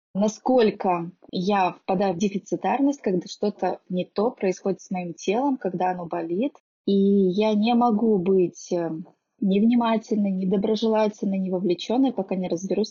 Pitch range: 185-220 Hz